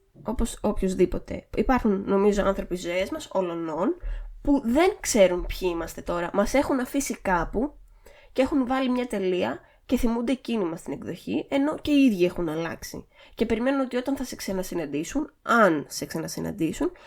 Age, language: 20-39, Greek